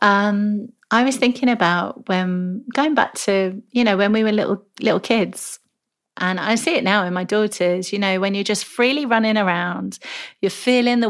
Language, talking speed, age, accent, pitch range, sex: English, 195 wpm, 30-49, British, 180-225 Hz, female